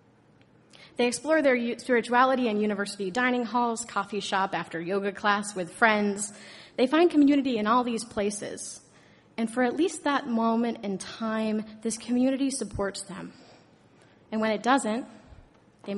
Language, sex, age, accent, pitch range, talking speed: English, female, 30-49, American, 210-250 Hz, 145 wpm